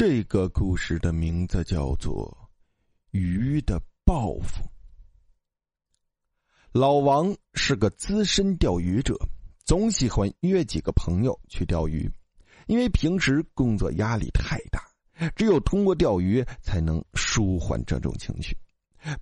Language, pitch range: Chinese, 85-135 Hz